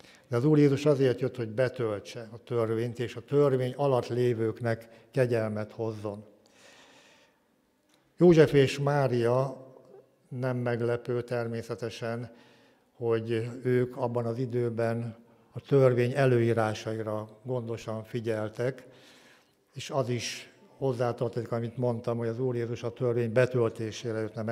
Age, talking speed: 60-79, 115 wpm